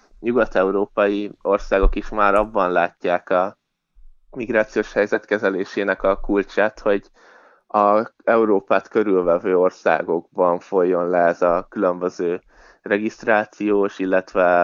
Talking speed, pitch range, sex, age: 95 wpm, 95-110 Hz, male, 20-39